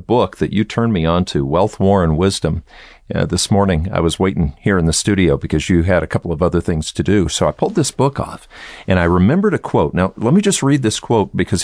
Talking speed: 260 wpm